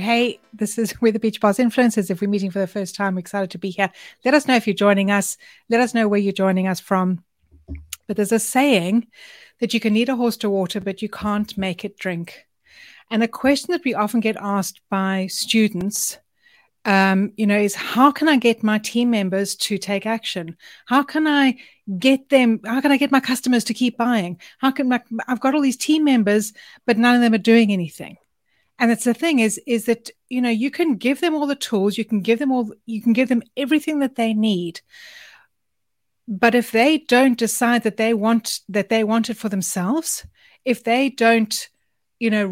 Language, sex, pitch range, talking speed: English, female, 205-250 Hz, 220 wpm